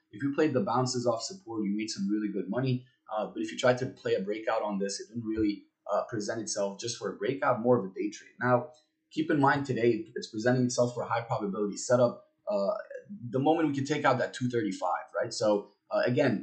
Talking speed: 235 wpm